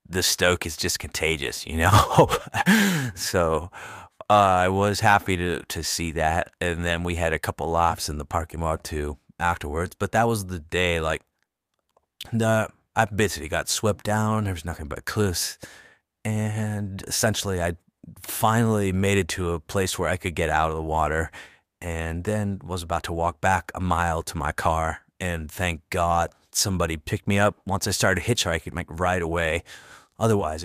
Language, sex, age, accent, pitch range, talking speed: English, male, 30-49, American, 85-105 Hz, 175 wpm